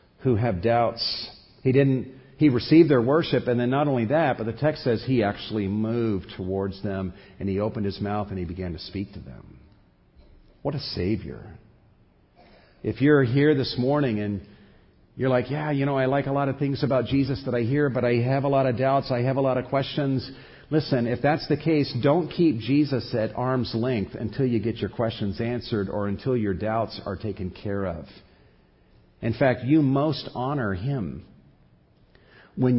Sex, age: male, 50-69